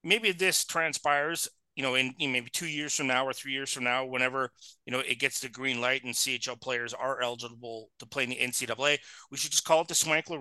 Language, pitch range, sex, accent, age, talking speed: English, 125-155 Hz, male, American, 30-49, 240 wpm